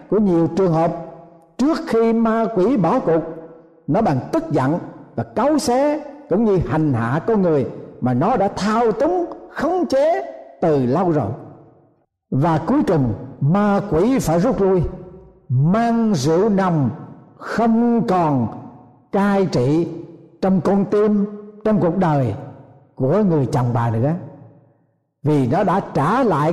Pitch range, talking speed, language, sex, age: 145-225 Hz, 145 wpm, Vietnamese, male, 60-79